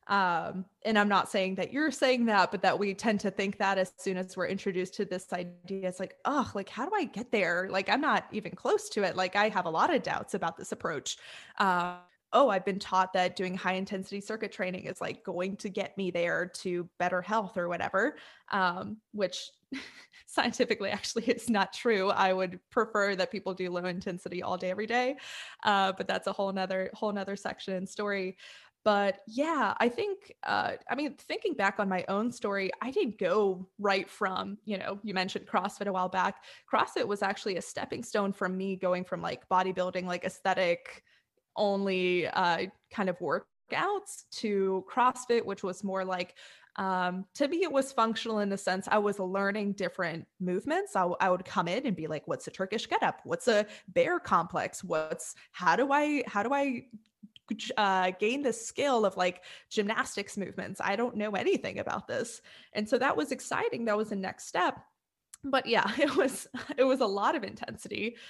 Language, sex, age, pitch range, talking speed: English, female, 20-39, 185-230 Hz, 200 wpm